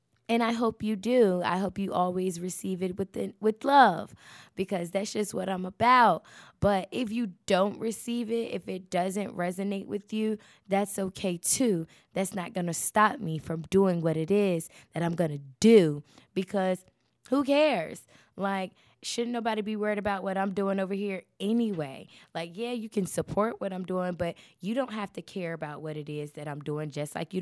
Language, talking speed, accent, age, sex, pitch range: English, 200 wpm, American, 20-39, female, 170-205 Hz